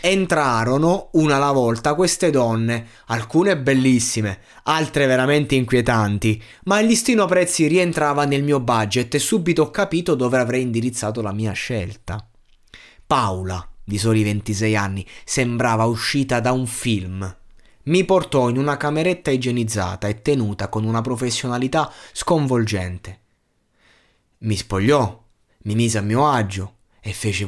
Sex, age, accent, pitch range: male, 20-39, native, 105-140 Hz